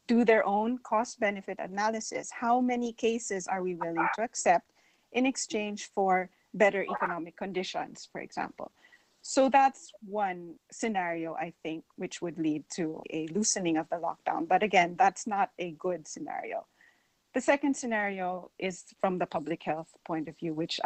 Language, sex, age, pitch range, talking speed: English, female, 40-59, 175-225 Hz, 160 wpm